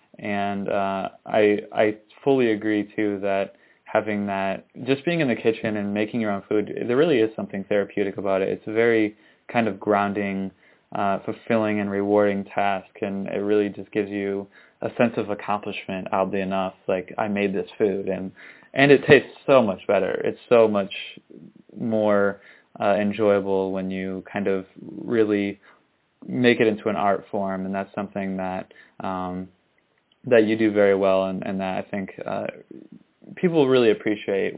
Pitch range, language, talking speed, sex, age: 95-110 Hz, English, 170 wpm, male, 20-39